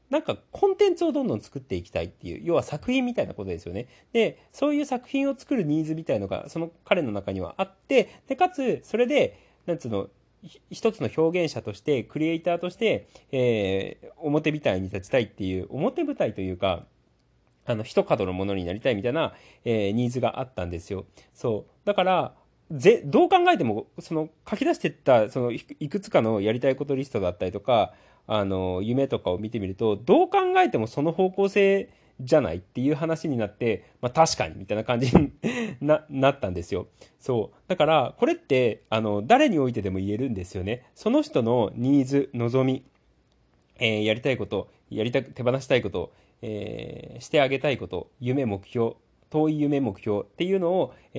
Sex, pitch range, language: male, 110-180 Hz, Japanese